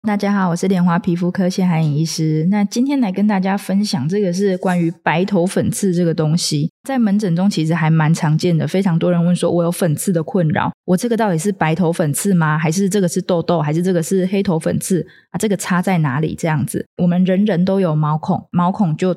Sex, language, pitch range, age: female, Chinese, 165-190 Hz, 20-39